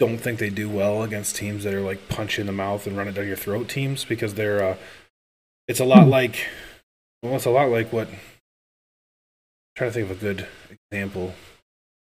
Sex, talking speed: male, 210 wpm